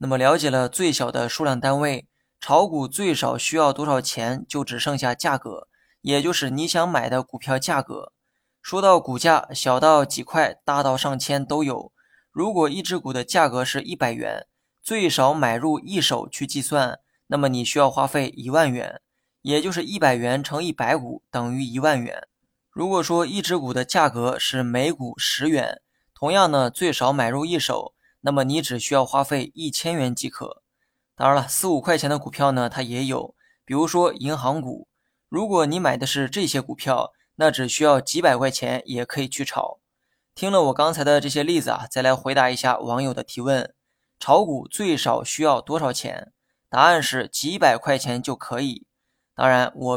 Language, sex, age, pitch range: Chinese, male, 20-39, 130-155 Hz